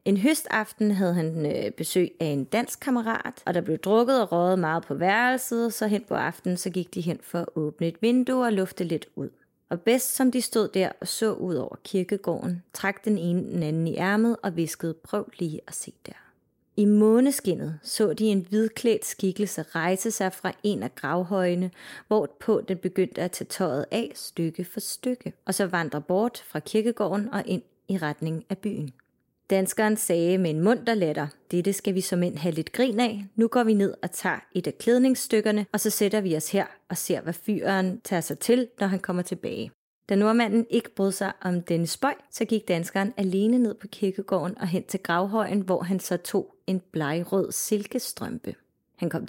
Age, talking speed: 30-49, 200 wpm